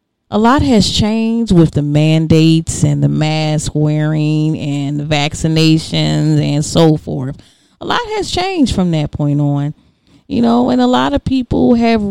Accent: American